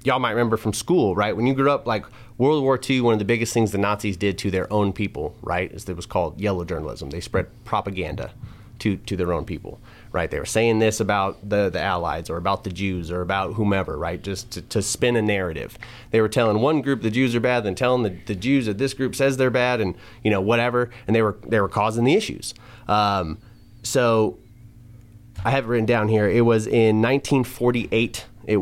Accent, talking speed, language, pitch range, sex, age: American, 230 wpm, English, 100-120 Hz, male, 30-49